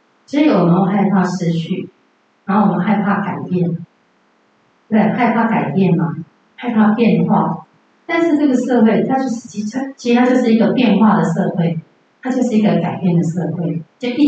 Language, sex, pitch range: Chinese, female, 180-225 Hz